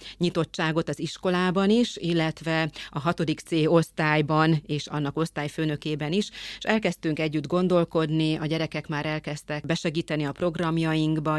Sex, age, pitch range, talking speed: female, 30-49, 150-170 Hz, 125 wpm